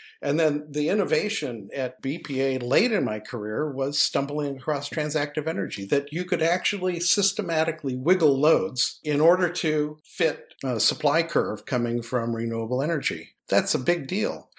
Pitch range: 135-170 Hz